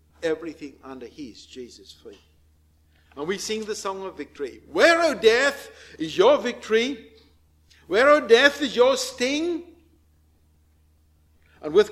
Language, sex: English, male